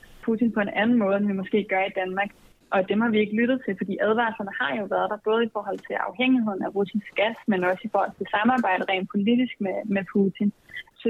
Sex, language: female, Danish